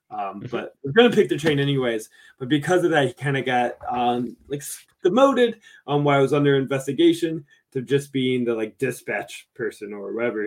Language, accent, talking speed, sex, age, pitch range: English, American, 195 wpm, male, 20-39, 125-155 Hz